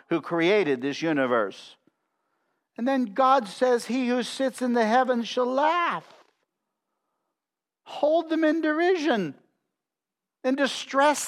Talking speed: 115 wpm